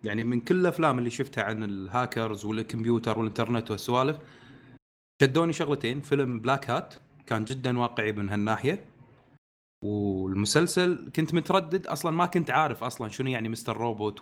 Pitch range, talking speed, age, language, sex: 115-145 Hz, 140 wpm, 30-49, Arabic, male